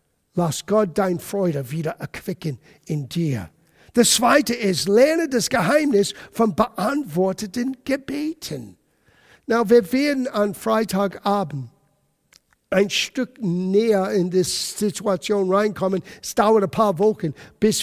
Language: German